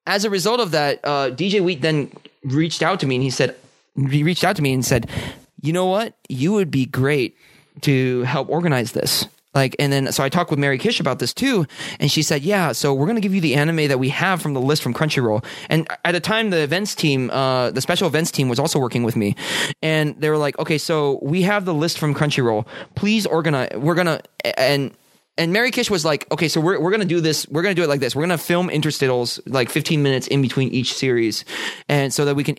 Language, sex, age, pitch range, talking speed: English, male, 20-39, 135-175 Hz, 255 wpm